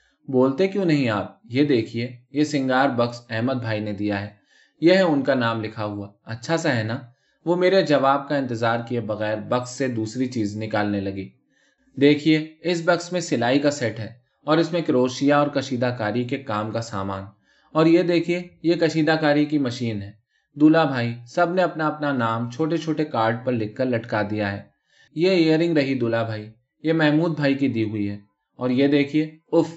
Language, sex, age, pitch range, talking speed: Urdu, male, 20-39, 110-155 Hz, 195 wpm